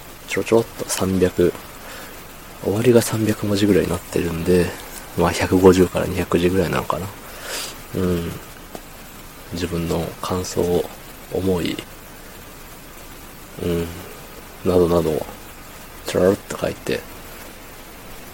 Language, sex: Japanese, male